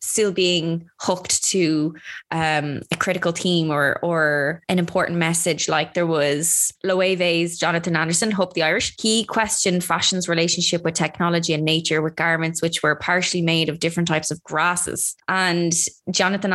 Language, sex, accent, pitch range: English, female, Irish, 165-190 Hz